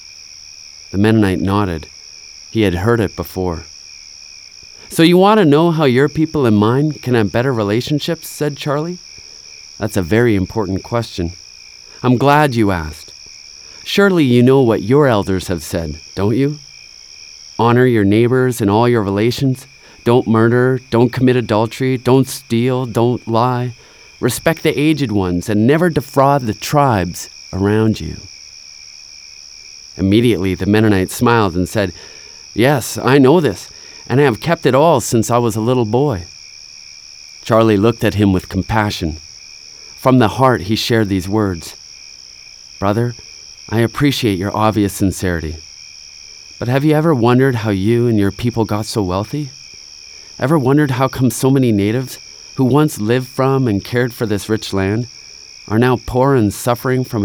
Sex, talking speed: male, 155 wpm